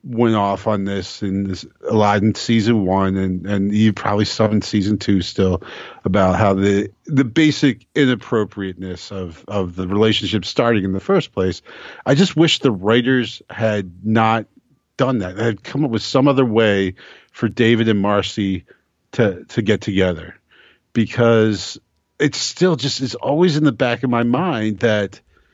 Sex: male